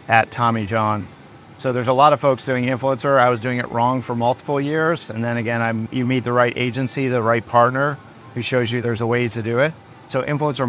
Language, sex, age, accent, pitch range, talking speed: English, male, 30-49, American, 120-135 Hz, 235 wpm